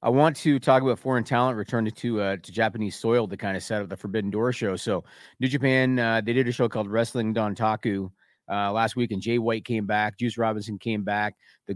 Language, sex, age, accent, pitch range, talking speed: English, male, 40-59, American, 110-130 Hz, 235 wpm